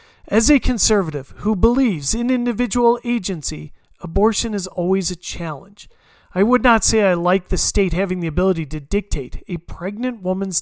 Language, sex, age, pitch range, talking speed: English, male, 40-59, 170-220 Hz, 165 wpm